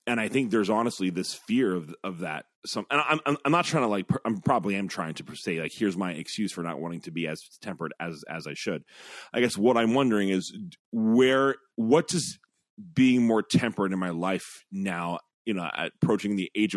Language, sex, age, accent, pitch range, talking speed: English, male, 30-49, American, 95-125 Hz, 215 wpm